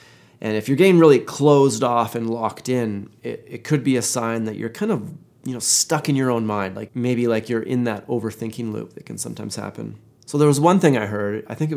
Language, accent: English, American